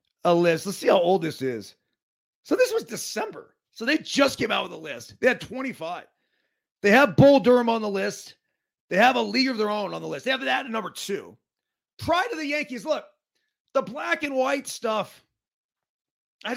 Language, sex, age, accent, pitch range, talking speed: English, male, 40-59, American, 190-270 Hz, 205 wpm